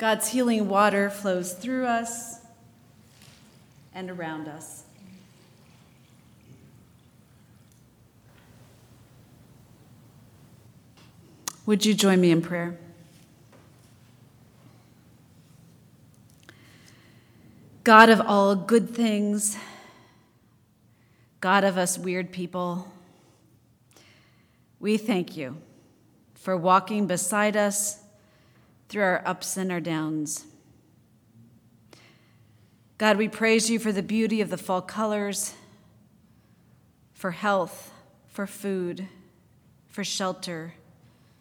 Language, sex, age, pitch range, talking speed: English, female, 40-59, 125-205 Hz, 80 wpm